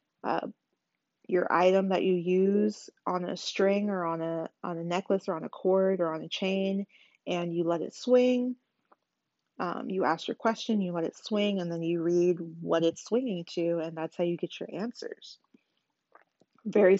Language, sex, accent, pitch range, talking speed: English, female, American, 175-210 Hz, 185 wpm